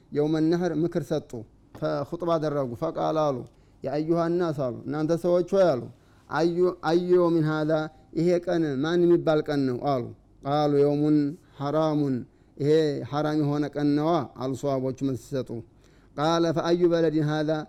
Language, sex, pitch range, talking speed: Amharic, male, 145-165 Hz, 70 wpm